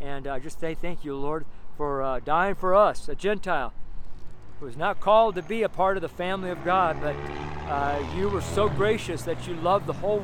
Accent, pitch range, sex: American, 135-190 Hz, male